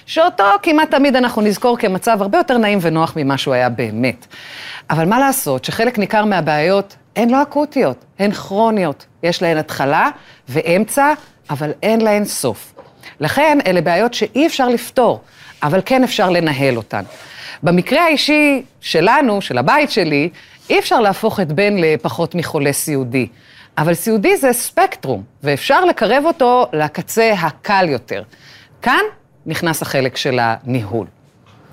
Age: 40-59